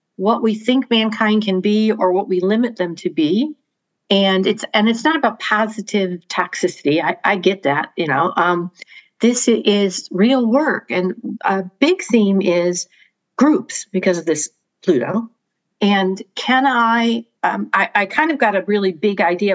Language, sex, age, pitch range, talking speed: English, female, 60-79, 185-230 Hz, 170 wpm